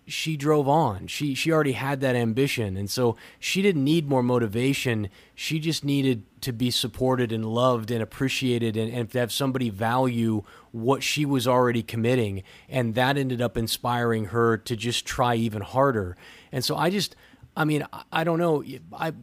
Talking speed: 180 wpm